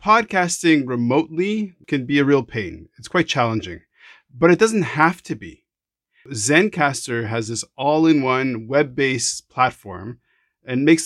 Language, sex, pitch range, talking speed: English, male, 120-165 Hz, 130 wpm